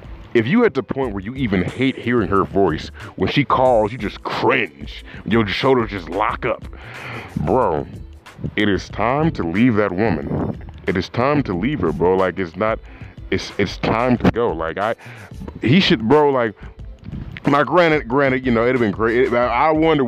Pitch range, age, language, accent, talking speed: 95-125 Hz, 30-49, English, American, 190 wpm